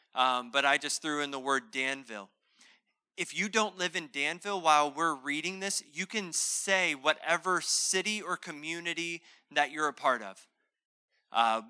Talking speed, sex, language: 165 wpm, male, English